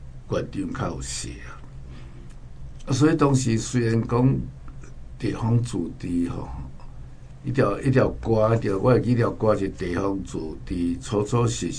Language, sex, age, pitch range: Chinese, male, 60-79, 90-130 Hz